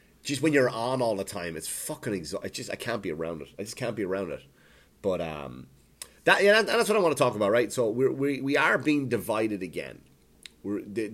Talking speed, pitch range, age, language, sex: 235 wpm, 80-105 Hz, 30-49, English, male